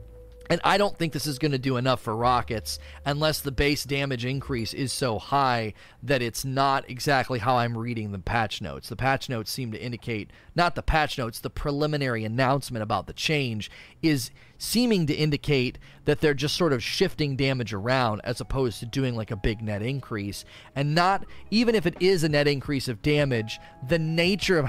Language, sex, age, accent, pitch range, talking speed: English, male, 30-49, American, 120-155 Hz, 195 wpm